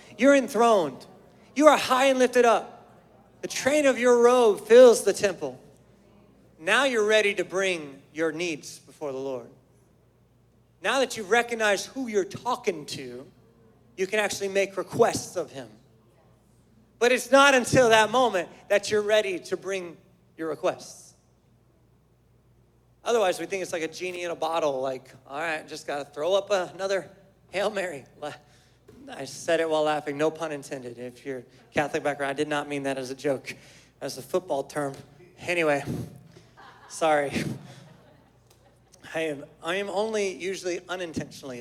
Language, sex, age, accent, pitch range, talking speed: English, male, 30-49, American, 140-215 Hz, 155 wpm